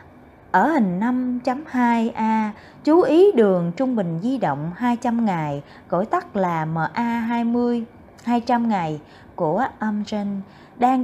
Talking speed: 115 wpm